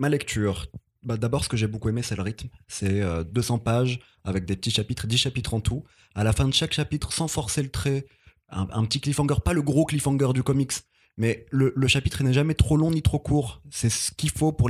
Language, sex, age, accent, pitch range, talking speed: French, male, 20-39, French, 105-135 Hz, 245 wpm